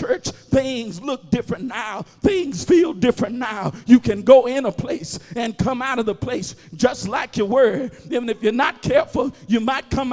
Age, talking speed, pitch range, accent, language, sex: 50-69, 195 wpm, 220-270 Hz, American, English, male